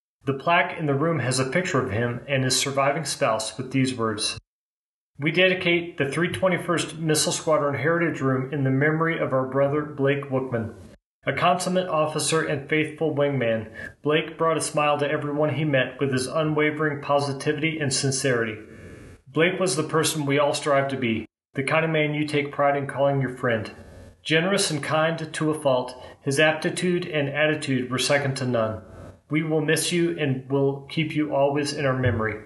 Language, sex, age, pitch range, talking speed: English, male, 30-49, 125-155 Hz, 185 wpm